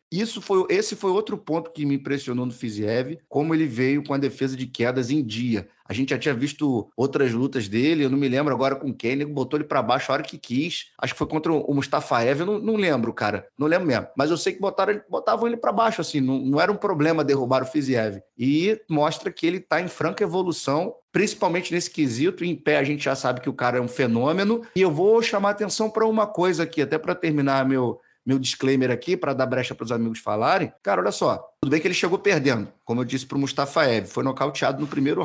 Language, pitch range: Portuguese, 135-175 Hz